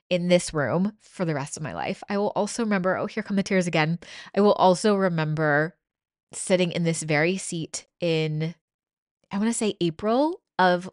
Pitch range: 155-190 Hz